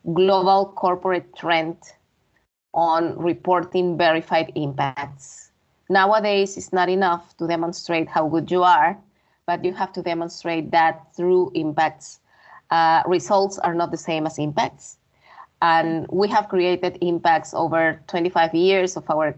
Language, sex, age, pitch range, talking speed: English, female, 20-39, 165-185 Hz, 135 wpm